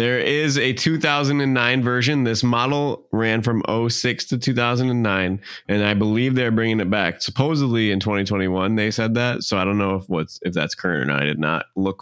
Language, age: English, 20-39